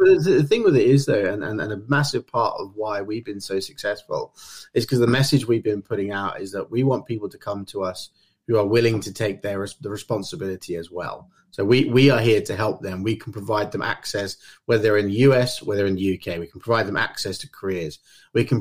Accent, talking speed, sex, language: British, 250 wpm, male, English